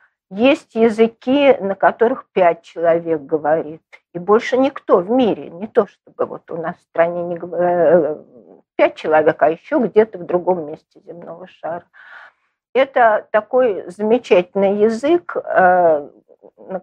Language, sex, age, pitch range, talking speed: Russian, female, 50-69, 180-245 Hz, 130 wpm